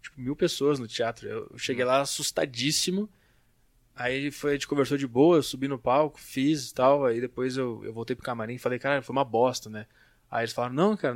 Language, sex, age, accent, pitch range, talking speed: Portuguese, male, 20-39, Brazilian, 125-155 Hz, 225 wpm